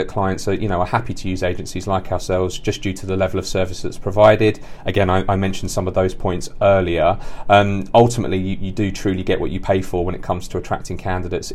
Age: 30-49